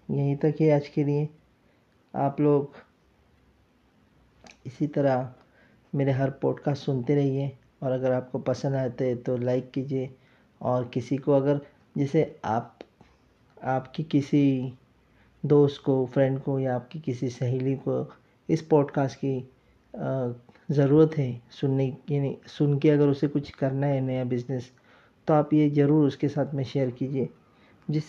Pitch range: 130-155 Hz